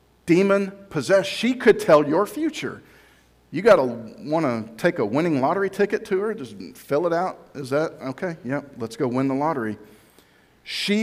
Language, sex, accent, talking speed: English, male, American, 170 wpm